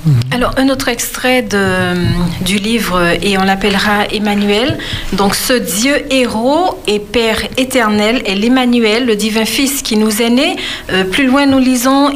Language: French